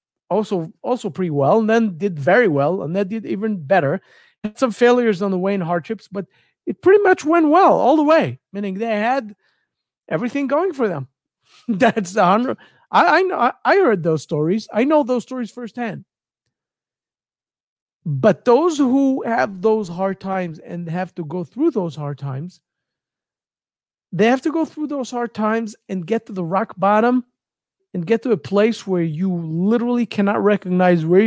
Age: 40-59